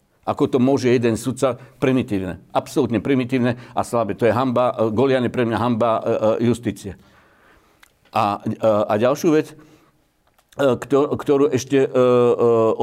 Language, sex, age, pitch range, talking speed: Slovak, male, 60-79, 105-125 Hz, 115 wpm